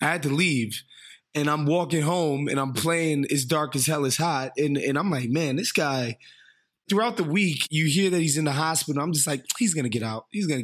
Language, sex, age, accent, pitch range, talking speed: English, male, 20-39, American, 130-160 Hz, 245 wpm